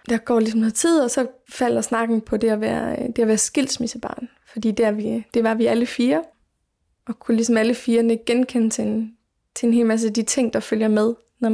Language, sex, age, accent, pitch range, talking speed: Danish, female, 20-39, native, 225-245 Hz, 225 wpm